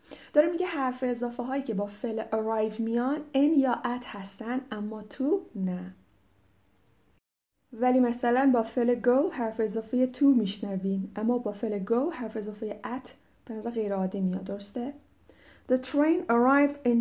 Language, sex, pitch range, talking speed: Persian, female, 200-255 Hz, 150 wpm